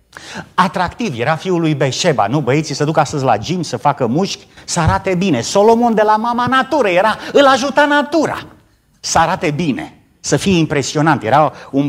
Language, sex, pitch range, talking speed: Romanian, male, 150-210 Hz, 175 wpm